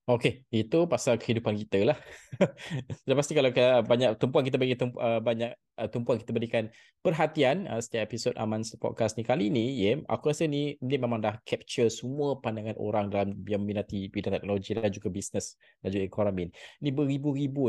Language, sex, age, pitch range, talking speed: Malay, male, 20-39, 105-125 Hz, 175 wpm